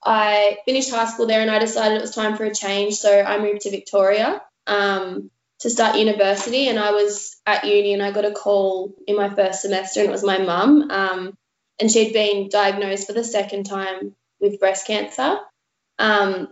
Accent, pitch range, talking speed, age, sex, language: Australian, 190-210 Hz, 195 wpm, 20-39, female, English